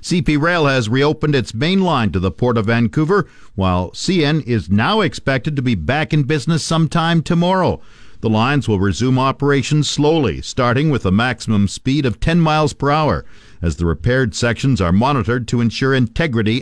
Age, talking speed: 50-69, 175 wpm